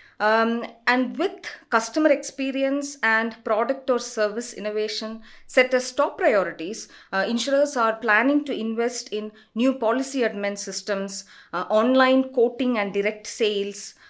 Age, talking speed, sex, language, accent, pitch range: 30-49, 130 wpm, female, English, Indian, 200-260 Hz